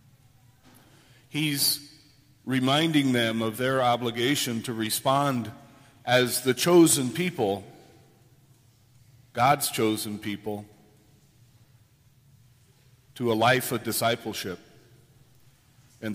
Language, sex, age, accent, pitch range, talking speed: English, male, 40-59, American, 120-140 Hz, 80 wpm